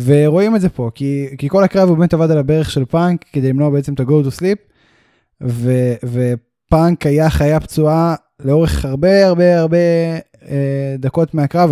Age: 10-29